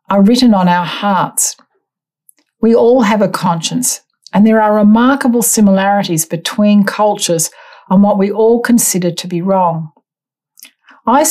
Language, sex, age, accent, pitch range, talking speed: English, female, 60-79, Australian, 175-215 Hz, 140 wpm